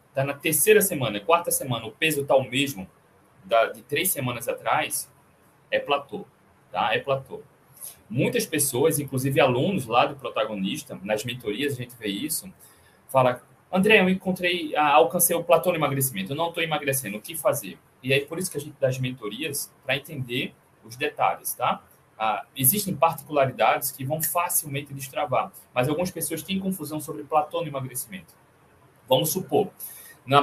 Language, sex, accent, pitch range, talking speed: Portuguese, male, Brazilian, 135-170 Hz, 170 wpm